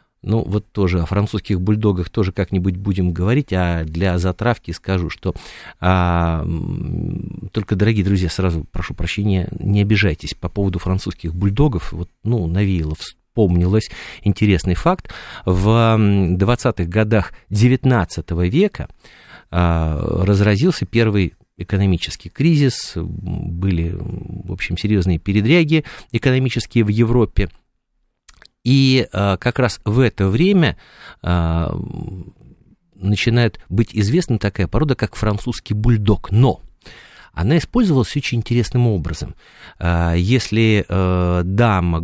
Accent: native